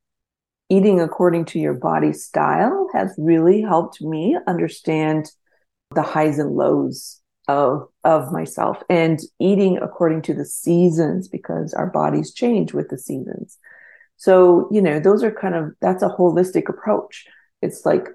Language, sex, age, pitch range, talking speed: English, female, 30-49, 155-190 Hz, 145 wpm